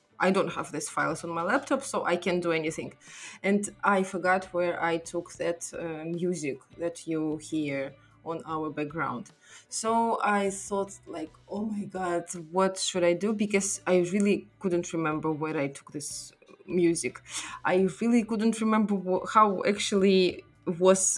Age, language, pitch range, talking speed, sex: 20-39, English, 165-200 Hz, 160 wpm, female